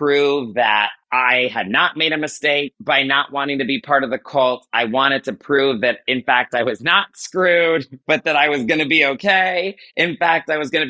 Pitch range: 125-155 Hz